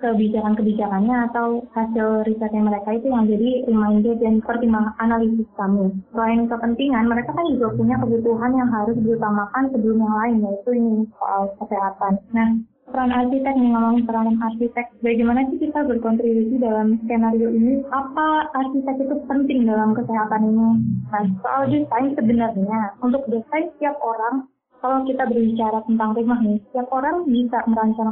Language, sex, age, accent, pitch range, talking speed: Indonesian, female, 20-39, native, 220-255 Hz, 145 wpm